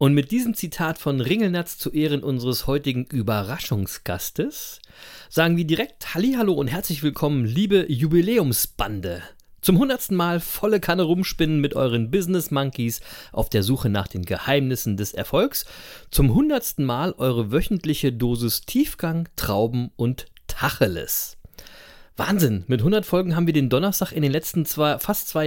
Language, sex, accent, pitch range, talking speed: German, male, German, 125-180 Hz, 145 wpm